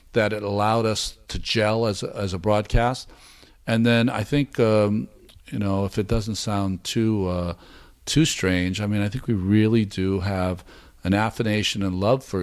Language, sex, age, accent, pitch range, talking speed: English, male, 50-69, American, 95-110 Hz, 190 wpm